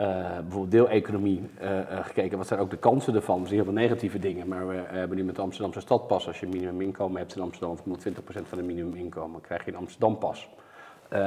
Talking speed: 235 wpm